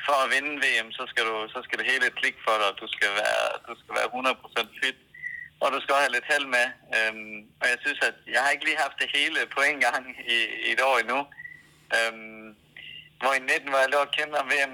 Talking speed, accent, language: 230 wpm, native, Danish